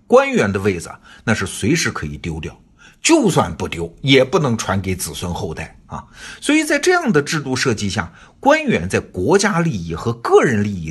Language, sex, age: Chinese, male, 50-69